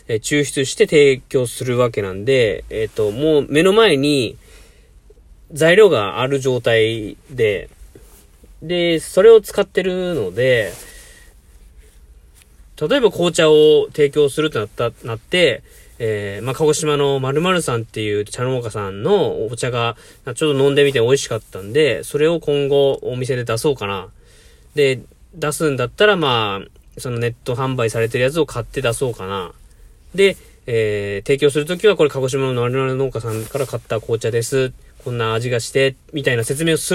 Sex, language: male, Japanese